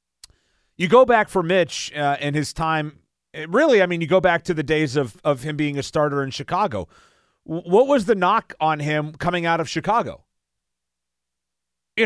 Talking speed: 195 wpm